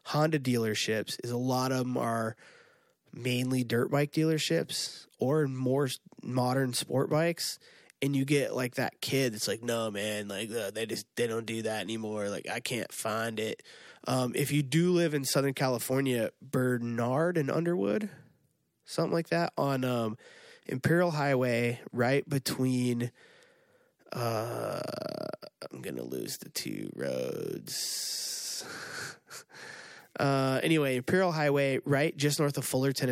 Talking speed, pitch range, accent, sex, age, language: 140 wpm, 115-140 Hz, American, male, 20-39, English